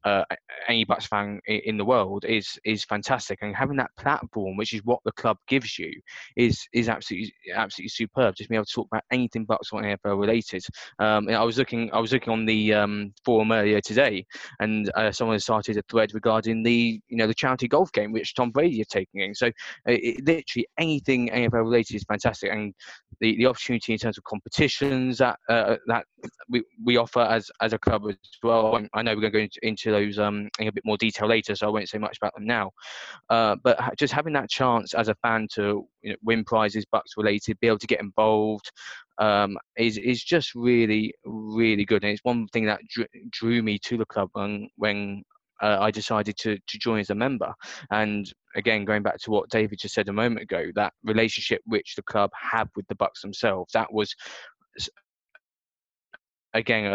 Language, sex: English, male